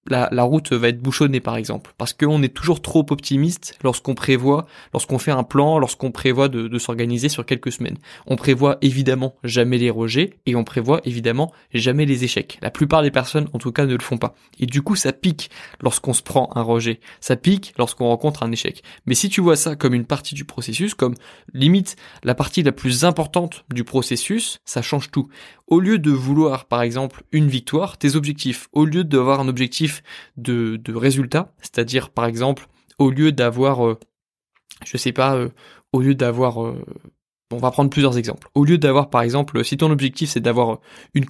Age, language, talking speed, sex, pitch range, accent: 20-39, French, 205 wpm, male, 125-150 Hz, French